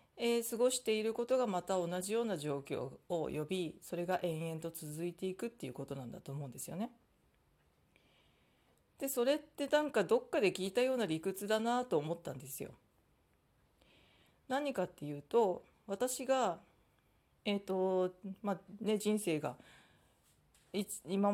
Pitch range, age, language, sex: 165-225 Hz, 40-59, Japanese, female